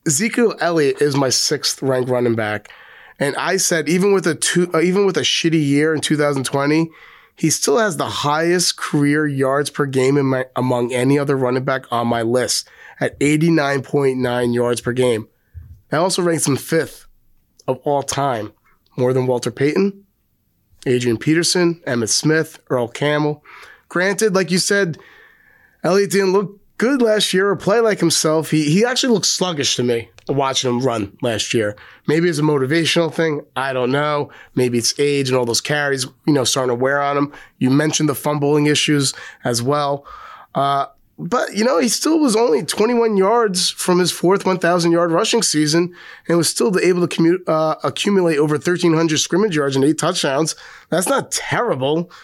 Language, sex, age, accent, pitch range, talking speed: English, male, 30-49, American, 130-175 Hz, 175 wpm